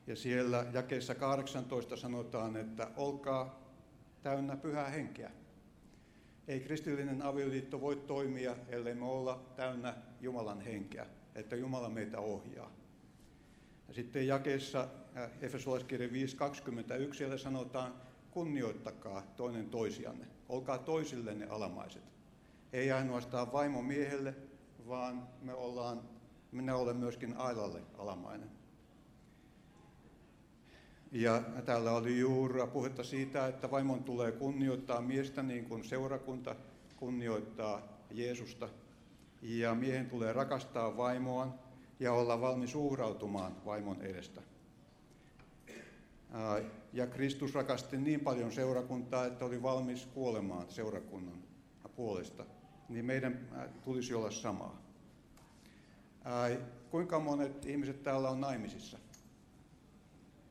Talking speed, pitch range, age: 100 wpm, 120-135 Hz, 60-79